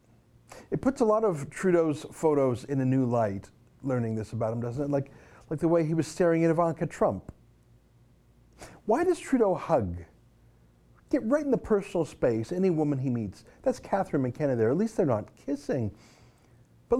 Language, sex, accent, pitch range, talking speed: English, male, American, 125-180 Hz, 180 wpm